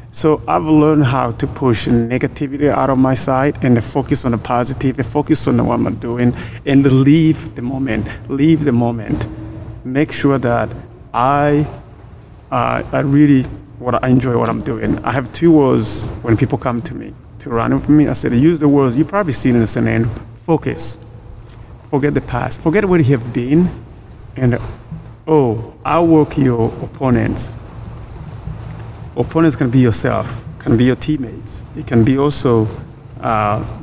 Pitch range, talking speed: 115-145 Hz, 165 wpm